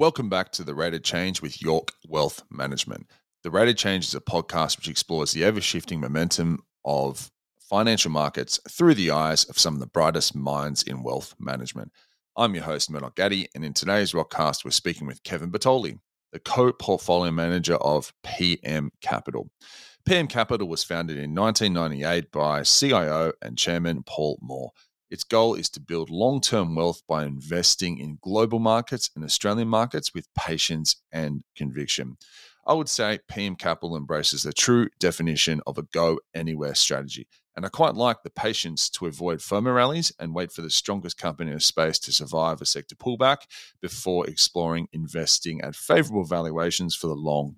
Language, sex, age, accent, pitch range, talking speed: English, male, 30-49, Australian, 75-100 Hz, 165 wpm